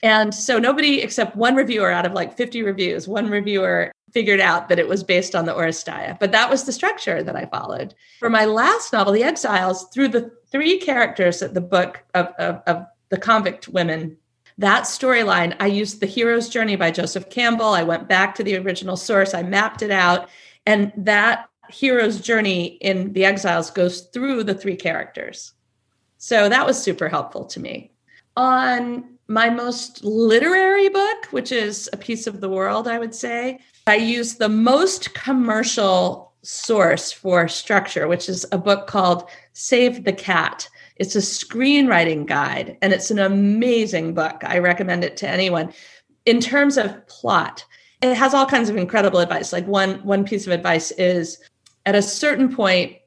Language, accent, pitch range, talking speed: English, American, 180-235 Hz, 175 wpm